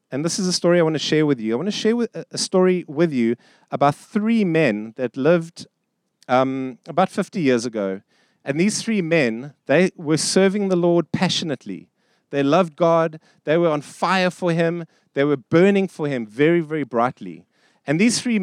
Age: 30-49